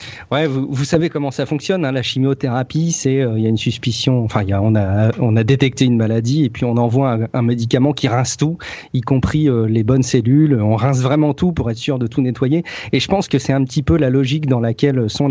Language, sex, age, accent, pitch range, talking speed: French, male, 40-59, French, 120-145 Hz, 260 wpm